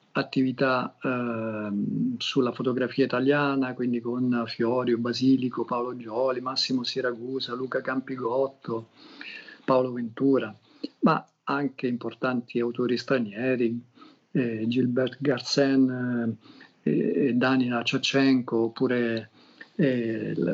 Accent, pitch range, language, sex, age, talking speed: native, 120-135 Hz, Italian, male, 50-69, 90 wpm